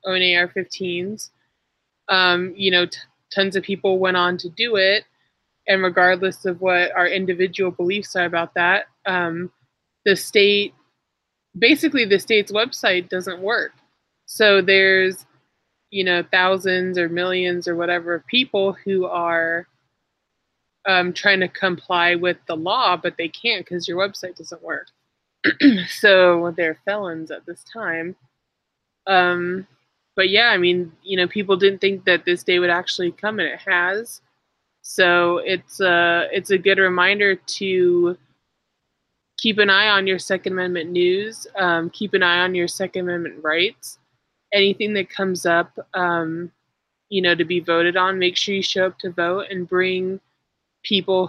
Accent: American